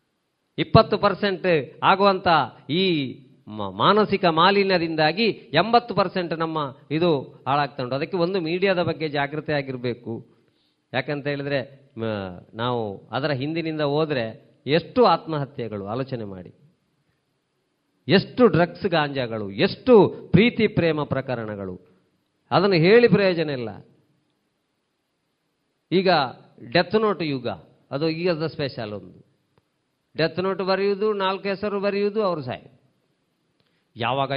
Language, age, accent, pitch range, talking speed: Kannada, 40-59, native, 145-190 Hz, 95 wpm